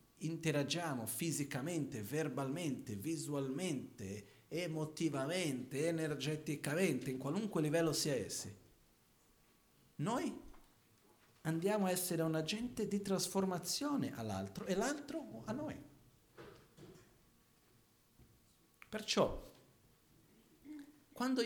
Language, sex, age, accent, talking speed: Italian, male, 50-69, native, 75 wpm